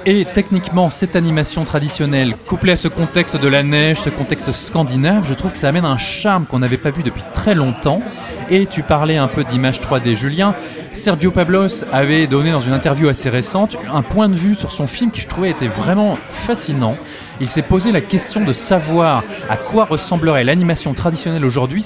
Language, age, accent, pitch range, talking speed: French, 30-49, French, 130-185 Hz, 200 wpm